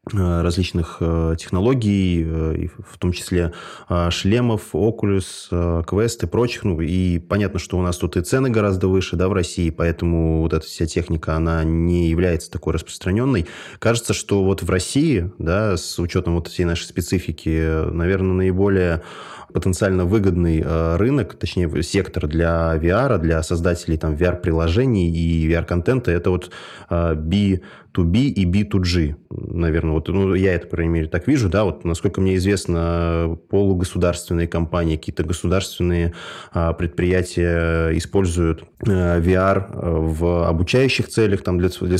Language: Russian